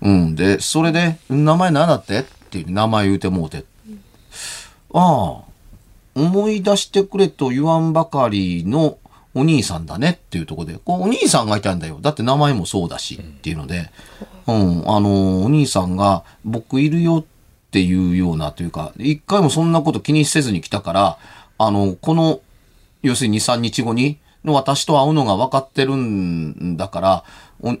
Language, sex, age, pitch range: Japanese, male, 40-59, 95-145 Hz